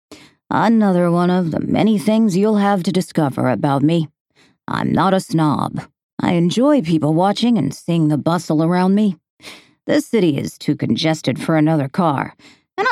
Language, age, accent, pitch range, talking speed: English, 50-69, American, 145-195 Hz, 165 wpm